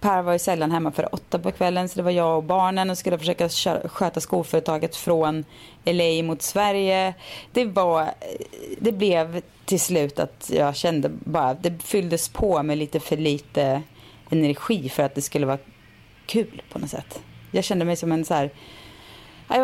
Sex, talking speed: female, 180 wpm